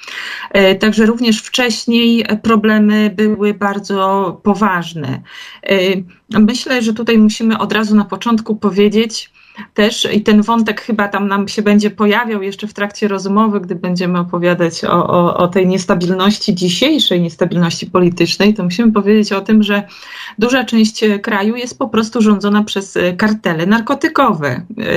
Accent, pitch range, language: native, 185-215 Hz, Polish